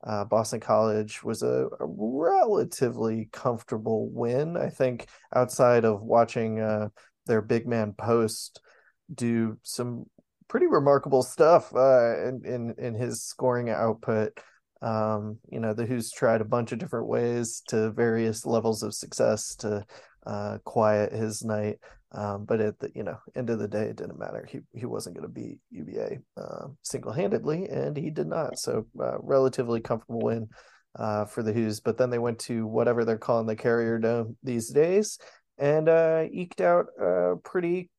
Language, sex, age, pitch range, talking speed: English, male, 30-49, 110-130 Hz, 165 wpm